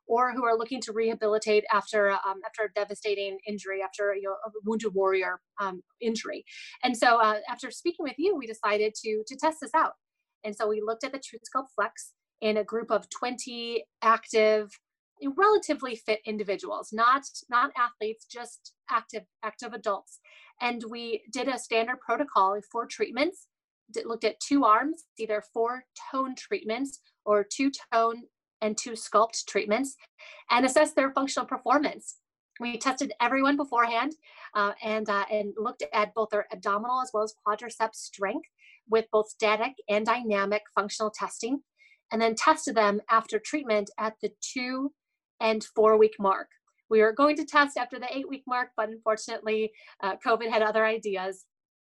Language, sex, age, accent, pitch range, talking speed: English, female, 30-49, American, 215-260 Hz, 165 wpm